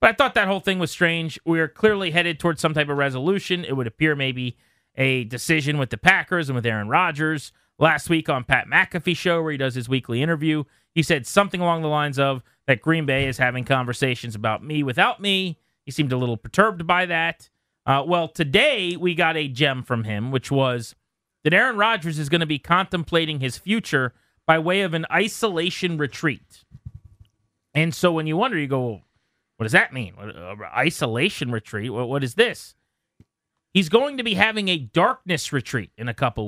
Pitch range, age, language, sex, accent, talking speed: 130-175 Hz, 30-49, English, male, American, 200 wpm